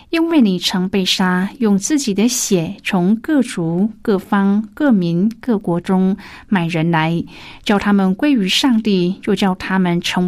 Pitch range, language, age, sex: 180-230 Hz, Chinese, 50-69, female